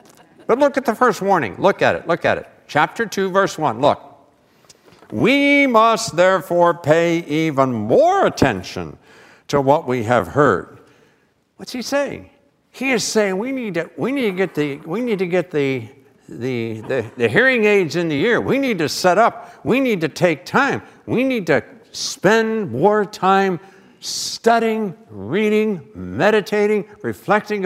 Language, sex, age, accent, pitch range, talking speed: English, male, 60-79, American, 145-210 Hz, 165 wpm